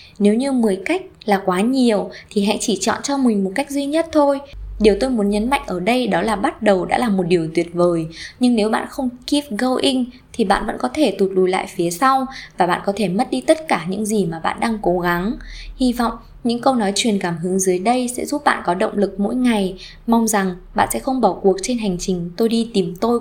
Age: 20-39